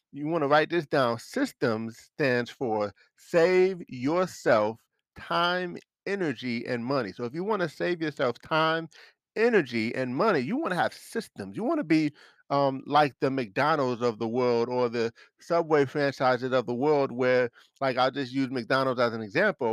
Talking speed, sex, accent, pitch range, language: 175 wpm, male, American, 125-165 Hz, English